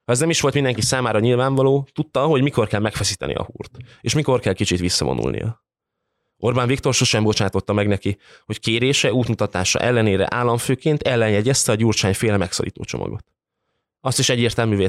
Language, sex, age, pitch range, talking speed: Hungarian, male, 20-39, 100-125 Hz, 155 wpm